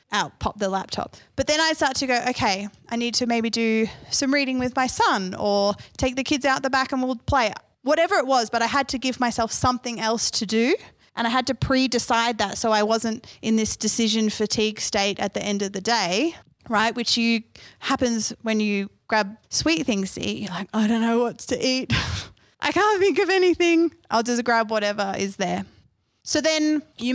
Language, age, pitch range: English, 20-39, 220-270 Hz